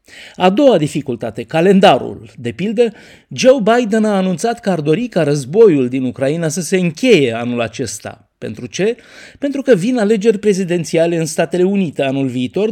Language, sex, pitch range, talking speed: Romanian, male, 135-200 Hz, 160 wpm